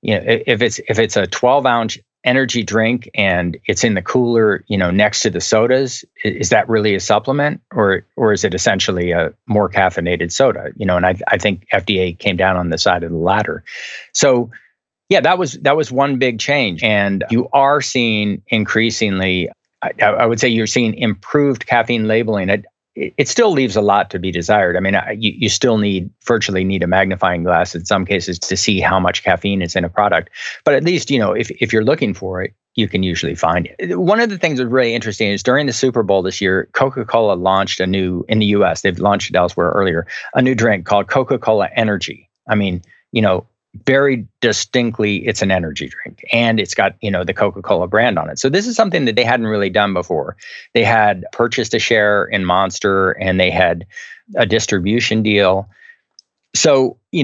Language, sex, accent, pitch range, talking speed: English, male, American, 95-120 Hz, 210 wpm